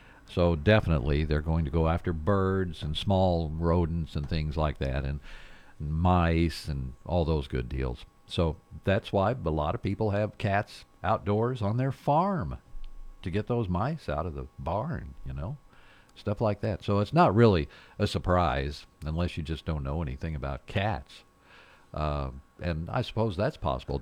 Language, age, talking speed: English, 50-69, 170 wpm